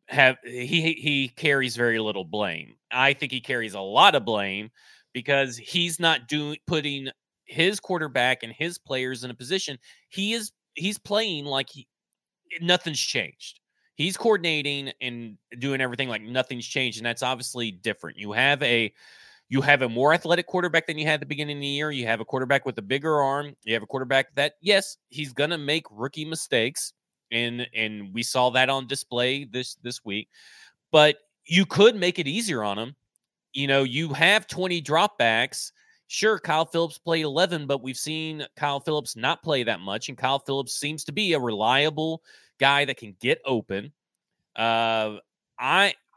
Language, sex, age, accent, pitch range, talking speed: English, male, 30-49, American, 125-165 Hz, 180 wpm